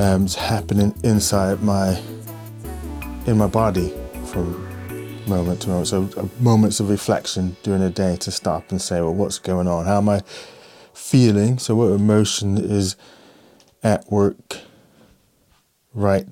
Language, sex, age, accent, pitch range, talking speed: English, male, 20-39, British, 95-110 Hz, 145 wpm